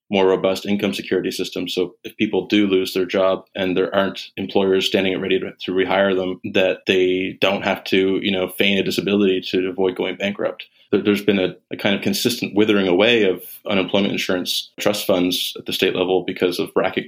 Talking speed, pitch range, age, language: 200 wpm, 95-100 Hz, 20-39, English